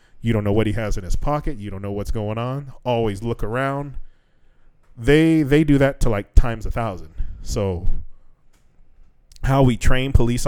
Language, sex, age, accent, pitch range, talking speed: English, male, 20-39, American, 95-130 Hz, 185 wpm